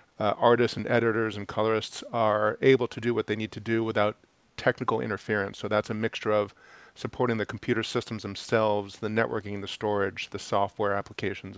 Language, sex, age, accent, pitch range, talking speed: English, male, 40-59, American, 105-125 Hz, 180 wpm